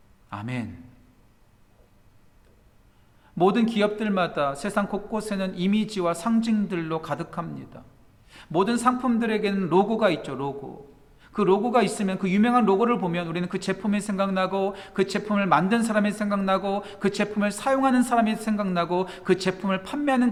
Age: 40-59